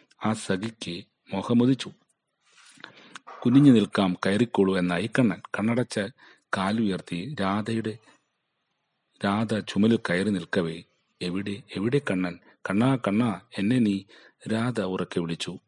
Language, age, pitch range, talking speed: Malayalam, 40-59, 90-115 Hz, 90 wpm